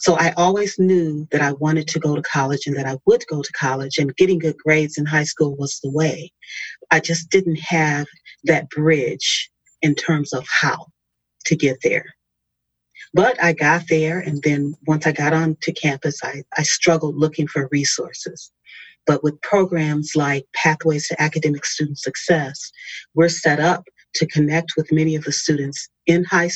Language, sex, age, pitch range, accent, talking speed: English, female, 40-59, 145-165 Hz, American, 180 wpm